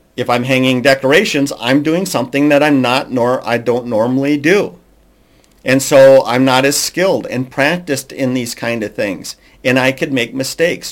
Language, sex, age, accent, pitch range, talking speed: English, male, 50-69, American, 115-145 Hz, 185 wpm